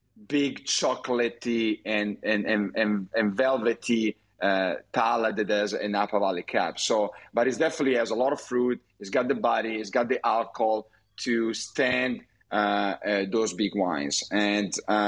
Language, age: English, 40-59